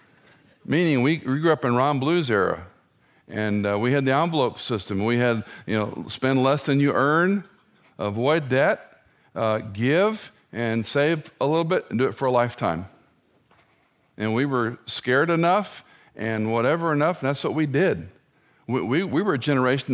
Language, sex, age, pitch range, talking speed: English, male, 50-69, 120-155 Hz, 180 wpm